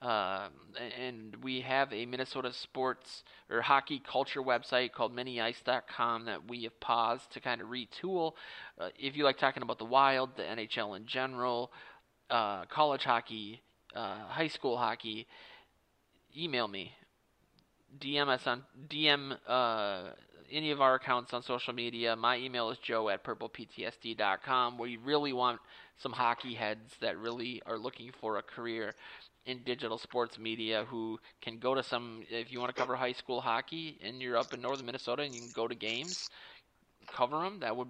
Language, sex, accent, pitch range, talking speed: English, male, American, 115-135 Hz, 175 wpm